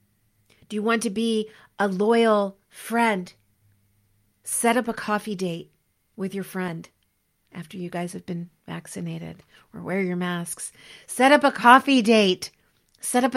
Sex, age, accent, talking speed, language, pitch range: female, 40-59, American, 150 wpm, English, 180-225 Hz